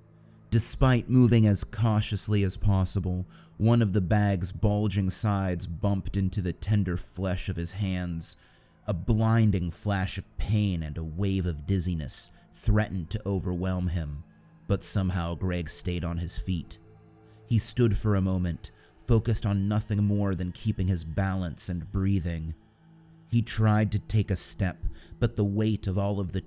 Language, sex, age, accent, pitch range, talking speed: English, male, 30-49, American, 90-105 Hz, 155 wpm